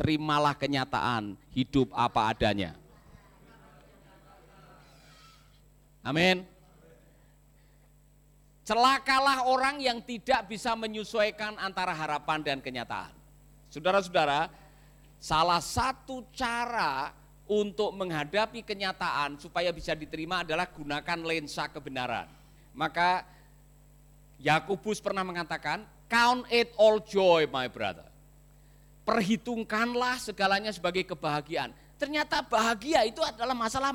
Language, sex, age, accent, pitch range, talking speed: Indonesian, male, 50-69, native, 145-215 Hz, 85 wpm